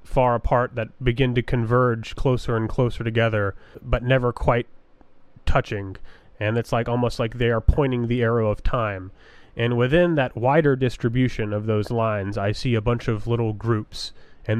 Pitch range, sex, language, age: 110-125 Hz, male, English, 30-49